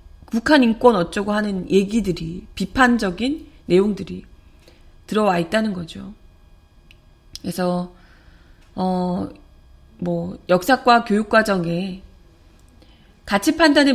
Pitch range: 175-245 Hz